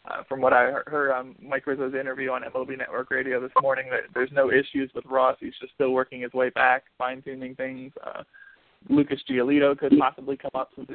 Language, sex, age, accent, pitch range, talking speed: English, male, 20-39, American, 125-135 Hz, 205 wpm